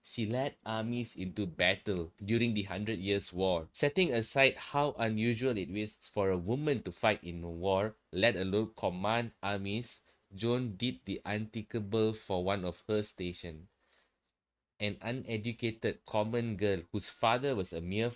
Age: 20-39